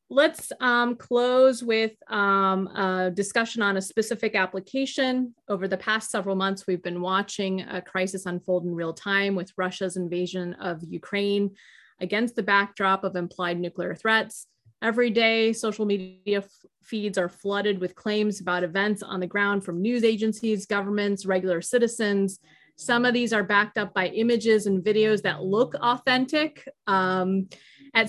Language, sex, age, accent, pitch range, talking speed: English, female, 30-49, American, 190-220 Hz, 150 wpm